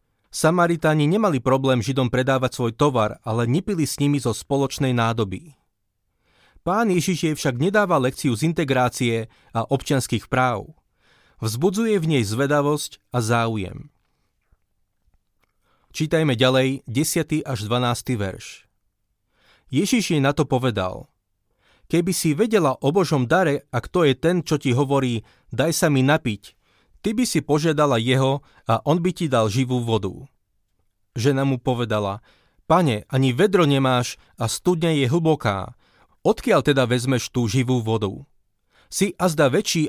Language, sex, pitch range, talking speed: Slovak, male, 115-150 Hz, 135 wpm